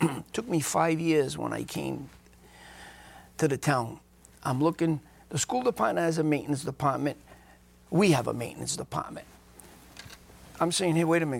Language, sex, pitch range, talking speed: English, male, 140-185 Hz, 160 wpm